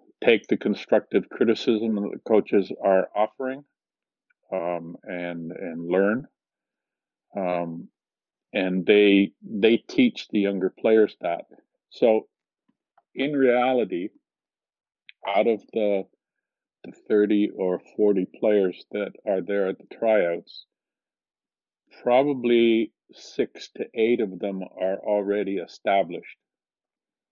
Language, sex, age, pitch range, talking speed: English, male, 50-69, 95-135 Hz, 105 wpm